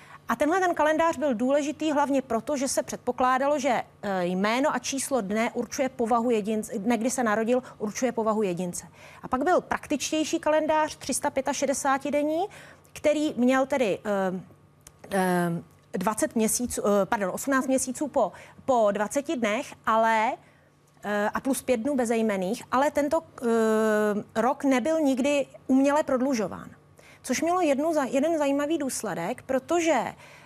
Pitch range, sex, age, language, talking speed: 235-295 Hz, female, 30-49, Czech, 130 wpm